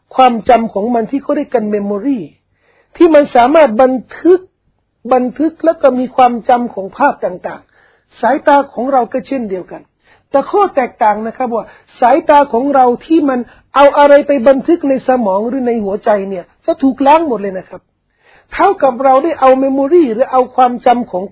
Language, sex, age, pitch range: Thai, male, 60-79, 235-290 Hz